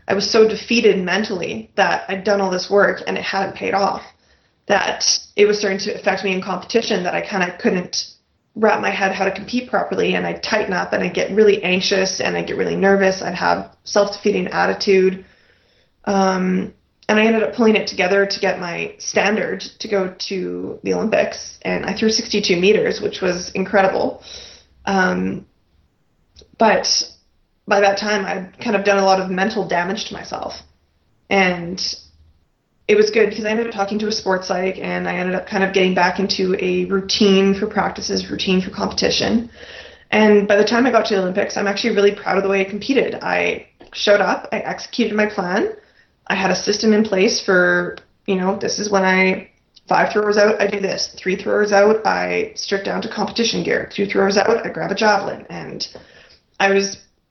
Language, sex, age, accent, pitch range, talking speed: English, female, 20-39, American, 185-210 Hz, 195 wpm